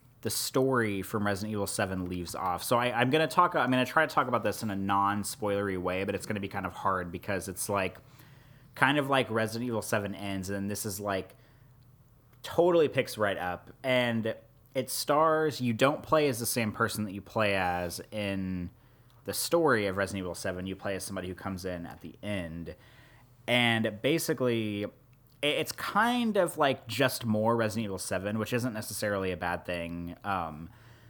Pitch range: 95-125 Hz